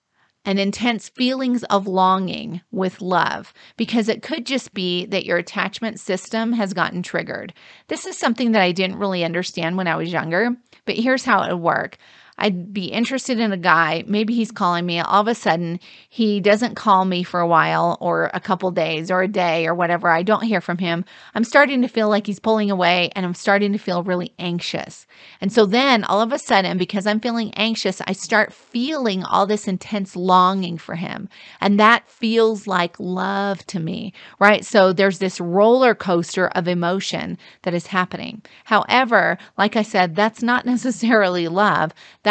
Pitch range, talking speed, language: 180-225 Hz, 190 wpm, English